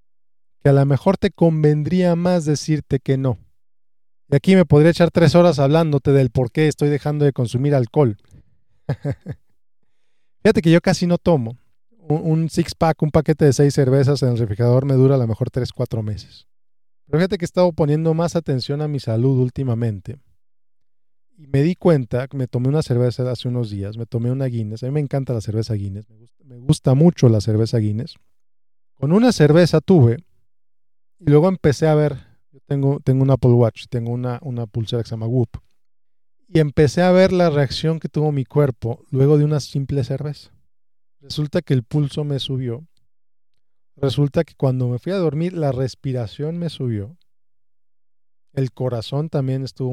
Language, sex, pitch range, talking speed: Spanish, male, 120-160 Hz, 185 wpm